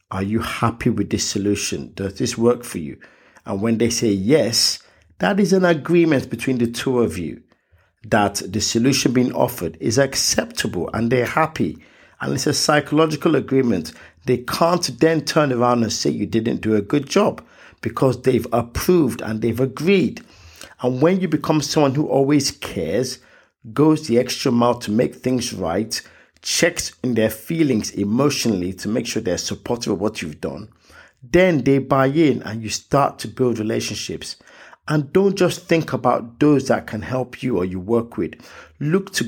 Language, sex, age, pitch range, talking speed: English, male, 50-69, 110-150 Hz, 175 wpm